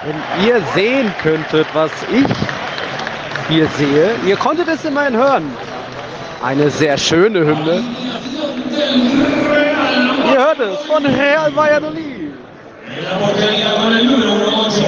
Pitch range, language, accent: 165-245 Hz, German, German